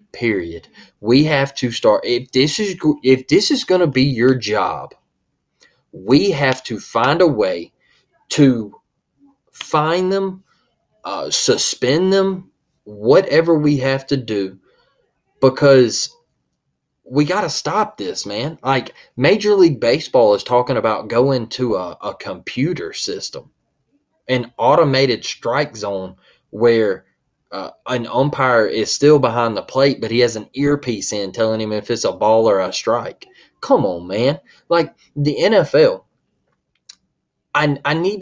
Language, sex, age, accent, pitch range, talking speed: English, male, 20-39, American, 120-170 Hz, 140 wpm